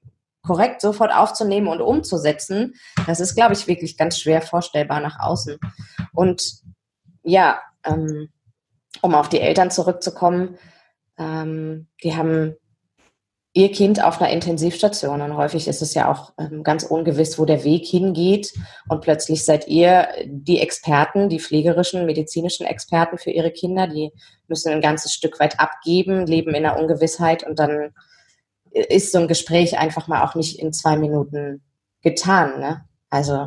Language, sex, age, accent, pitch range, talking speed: German, female, 20-39, German, 145-170 Hz, 150 wpm